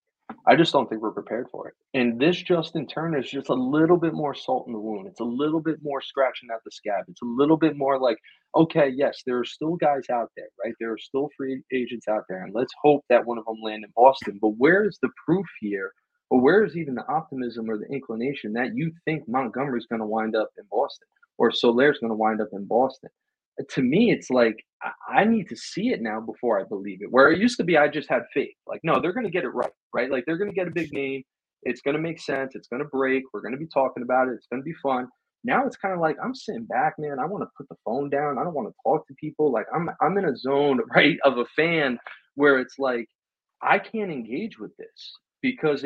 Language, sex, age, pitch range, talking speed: English, male, 30-49, 125-165 Hz, 260 wpm